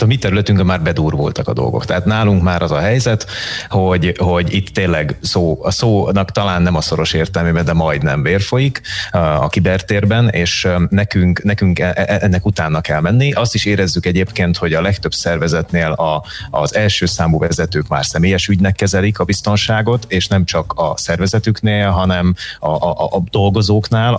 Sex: male